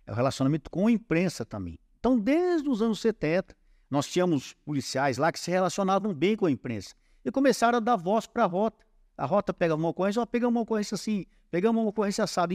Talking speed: 205 wpm